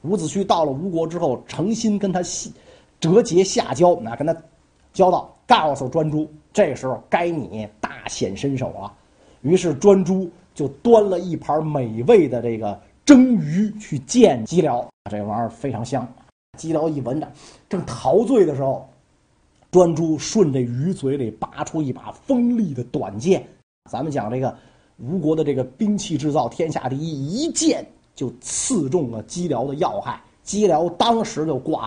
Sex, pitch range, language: male, 140-210 Hz, Chinese